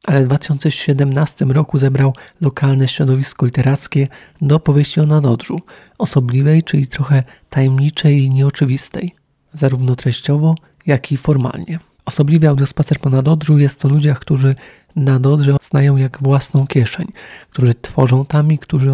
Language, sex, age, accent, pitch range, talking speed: Polish, male, 40-59, native, 135-150 Hz, 130 wpm